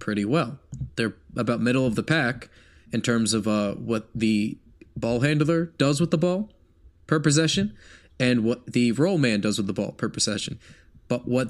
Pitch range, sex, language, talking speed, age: 110-135 Hz, male, English, 185 wpm, 20-39